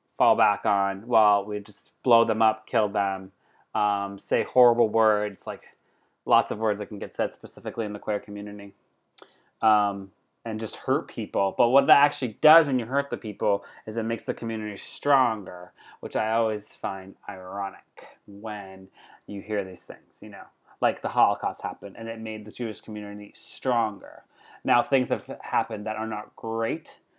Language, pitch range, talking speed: English, 100-115 Hz, 175 wpm